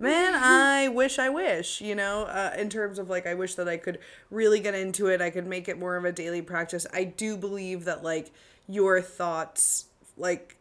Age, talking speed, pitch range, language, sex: 20-39, 215 wpm, 175-210 Hz, English, female